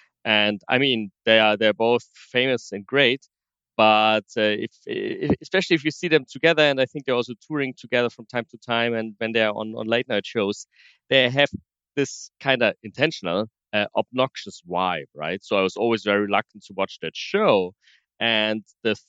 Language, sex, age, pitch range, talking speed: English, male, 30-49, 110-140 Hz, 195 wpm